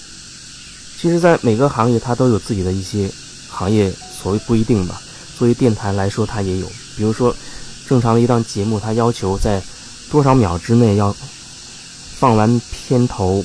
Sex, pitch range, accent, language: male, 100-125 Hz, native, Chinese